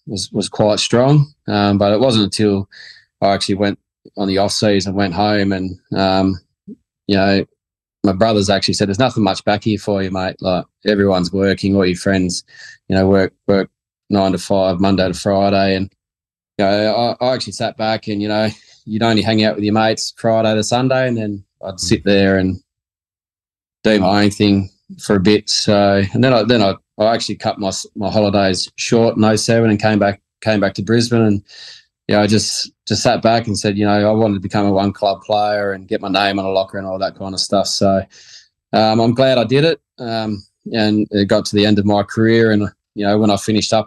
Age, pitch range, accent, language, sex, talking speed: 20-39, 95-110 Hz, Australian, English, male, 225 wpm